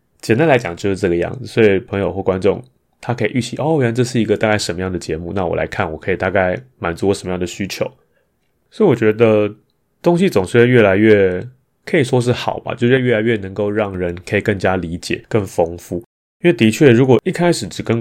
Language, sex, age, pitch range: Chinese, male, 20-39, 95-115 Hz